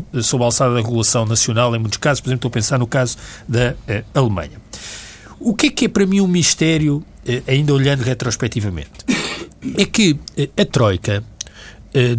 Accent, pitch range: Brazilian, 110-165 Hz